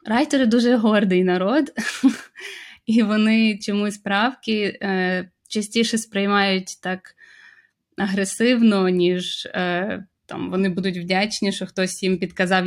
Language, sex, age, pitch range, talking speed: Ukrainian, female, 20-39, 195-225 Hz, 110 wpm